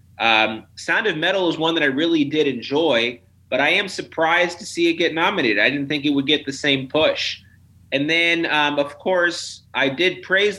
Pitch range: 115-145 Hz